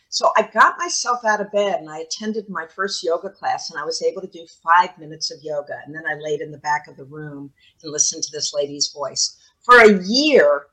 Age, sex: 50-69, female